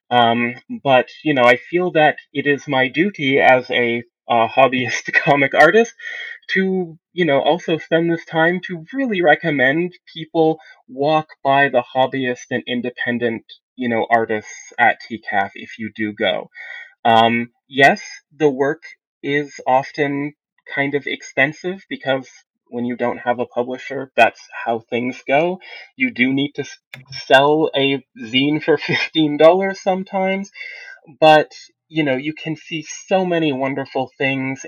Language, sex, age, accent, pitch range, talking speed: English, male, 20-39, American, 125-160 Hz, 145 wpm